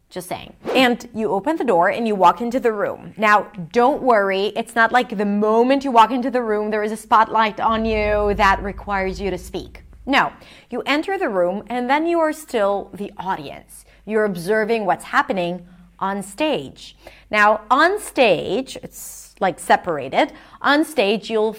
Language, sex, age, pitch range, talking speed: English, female, 30-49, 190-255 Hz, 180 wpm